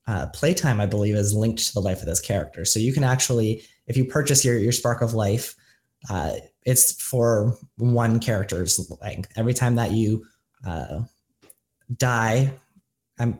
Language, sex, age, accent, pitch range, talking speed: English, male, 20-39, American, 110-130 Hz, 165 wpm